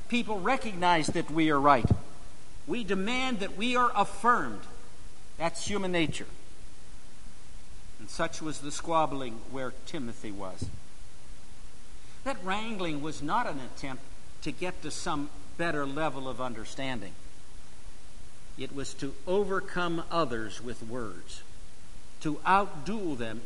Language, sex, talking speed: English, male, 120 wpm